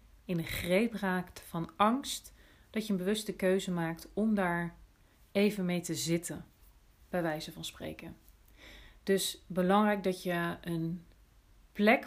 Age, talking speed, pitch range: 40-59, 140 wpm, 160-190 Hz